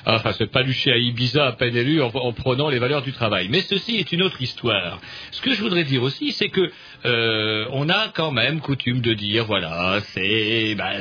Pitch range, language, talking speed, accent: 125-165 Hz, French, 215 wpm, French